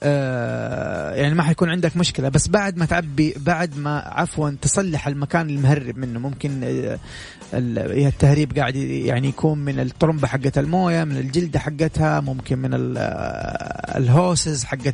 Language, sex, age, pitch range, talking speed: English, male, 30-49, 140-175 Hz, 130 wpm